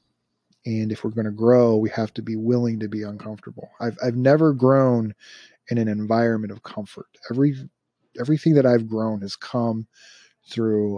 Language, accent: English, American